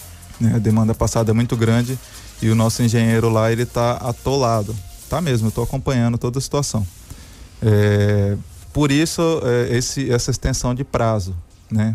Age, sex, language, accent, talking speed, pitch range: 20-39, male, Portuguese, Brazilian, 160 wpm, 110-130 Hz